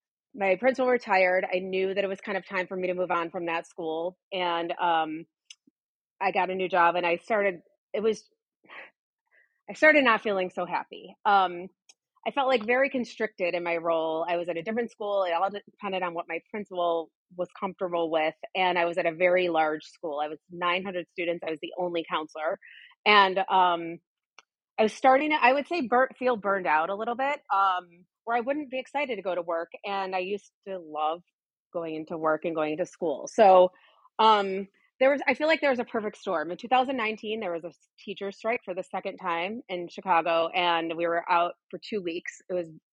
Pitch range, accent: 175-215 Hz, American